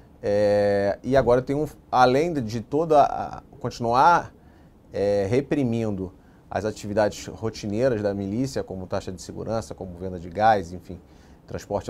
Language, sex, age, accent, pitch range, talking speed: Portuguese, male, 30-49, Brazilian, 100-135 Hz, 135 wpm